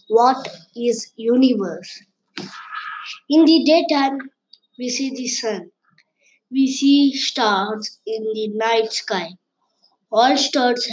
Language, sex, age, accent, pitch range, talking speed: English, female, 20-39, Indian, 220-275 Hz, 105 wpm